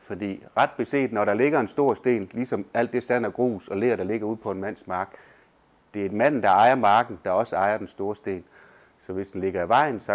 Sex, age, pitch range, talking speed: male, 30-49, 100-145 Hz, 260 wpm